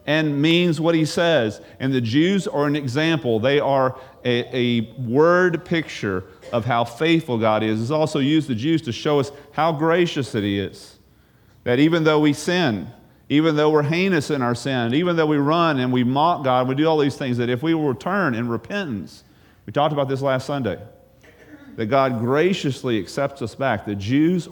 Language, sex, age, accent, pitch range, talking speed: English, male, 40-59, American, 115-150 Hz, 200 wpm